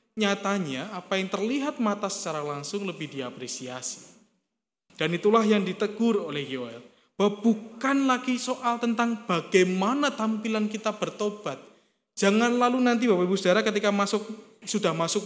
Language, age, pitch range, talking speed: Indonesian, 20-39, 170-230 Hz, 130 wpm